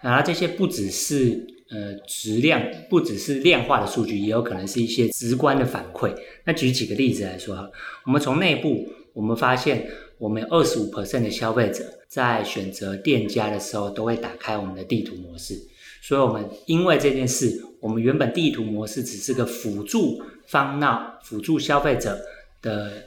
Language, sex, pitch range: Chinese, male, 105-135 Hz